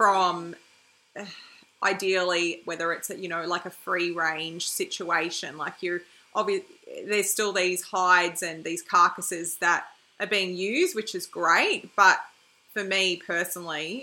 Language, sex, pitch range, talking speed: English, female, 170-200 Hz, 135 wpm